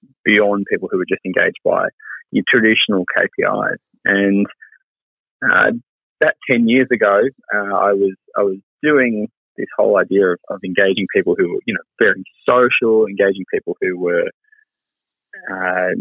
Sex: male